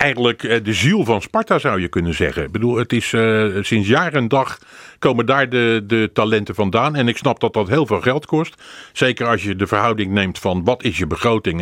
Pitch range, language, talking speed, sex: 105-130 Hz, Dutch, 225 wpm, male